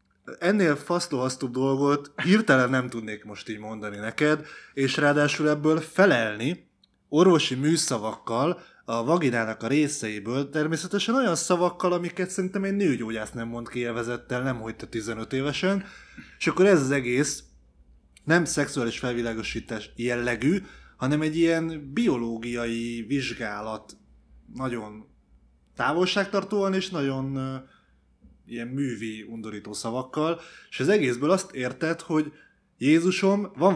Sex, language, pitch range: male, Hungarian, 115-160 Hz